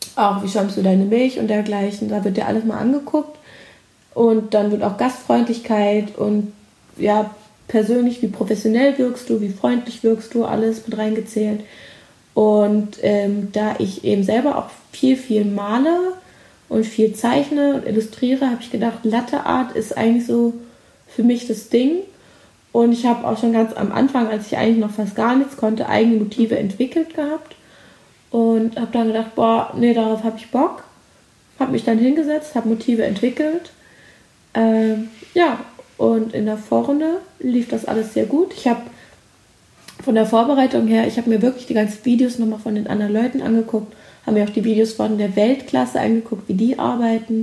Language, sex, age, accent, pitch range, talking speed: German, female, 20-39, German, 215-250 Hz, 175 wpm